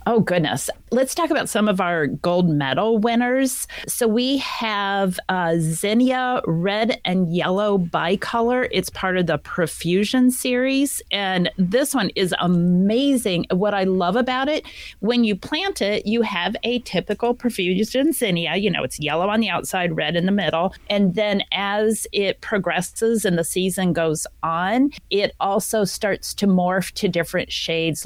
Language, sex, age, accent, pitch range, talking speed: English, female, 40-59, American, 175-225 Hz, 160 wpm